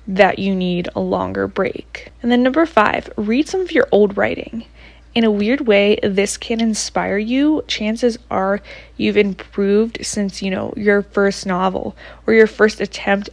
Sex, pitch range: female, 190-220 Hz